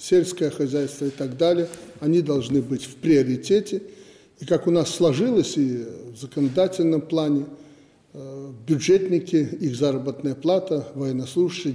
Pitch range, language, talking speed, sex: 135-160 Hz, Russian, 125 wpm, male